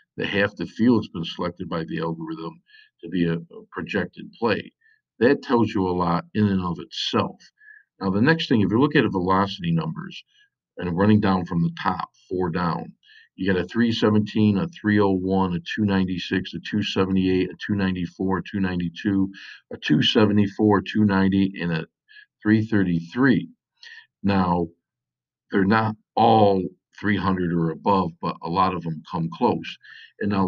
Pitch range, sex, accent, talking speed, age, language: 90-110 Hz, male, American, 155 wpm, 50-69, English